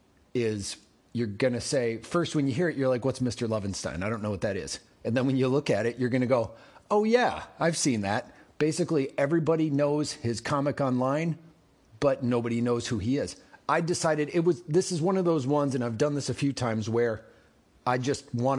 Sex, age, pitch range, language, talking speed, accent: male, 30-49, 115-150 Hz, English, 225 wpm, American